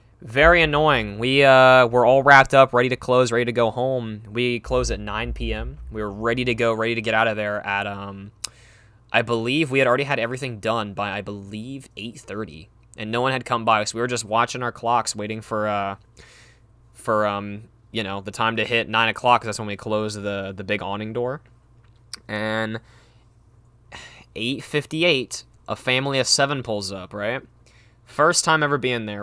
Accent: American